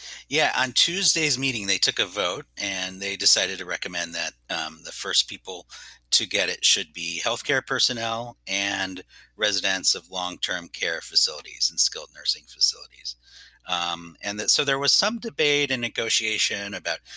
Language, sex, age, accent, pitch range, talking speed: English, male, 30-49, American, 90-115 Hz, 155 wpm